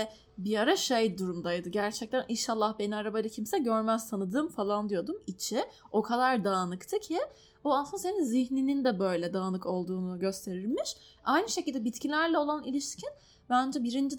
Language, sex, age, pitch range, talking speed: Turkish, female, 10-29, 205-275 Hz, 145 wpm